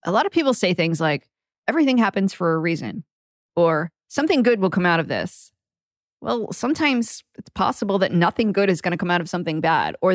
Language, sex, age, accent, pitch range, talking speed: English, female, 20-39, American, 170-225 Hz, 215 wpm